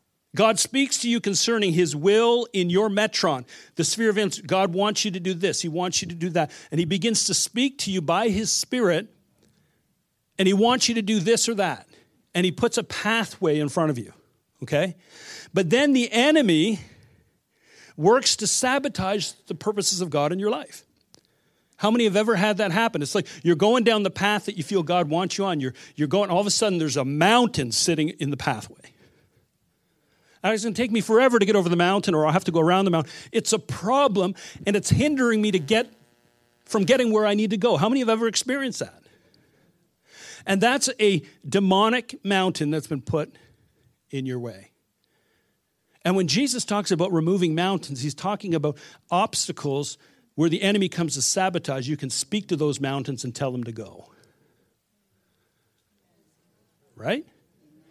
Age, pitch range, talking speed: 50-69, 160-220 Hz, 190 wpm